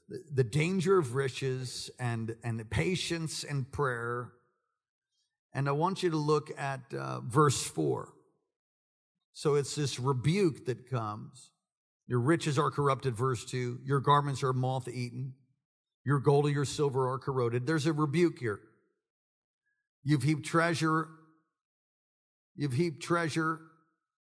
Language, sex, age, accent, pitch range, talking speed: English, male, 50-69, American, 130-165 Hz, 130 wpm